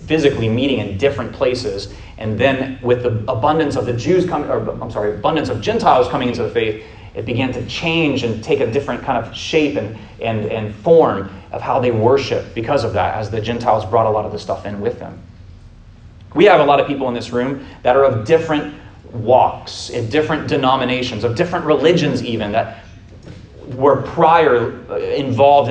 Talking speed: 195 wpm